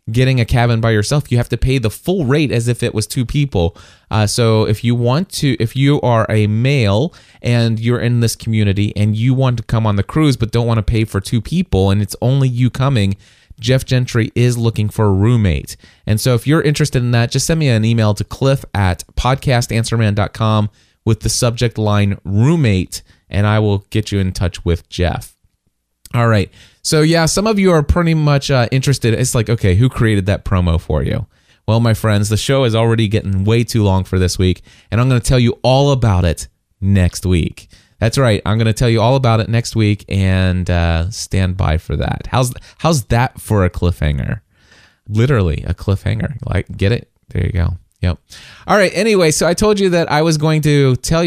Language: English